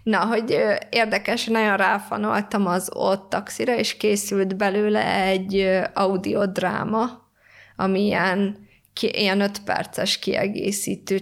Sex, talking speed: female, 95 wpm